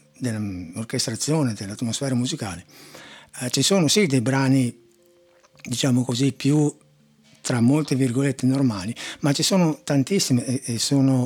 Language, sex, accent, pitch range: Italian, male, native, 115-150 Hz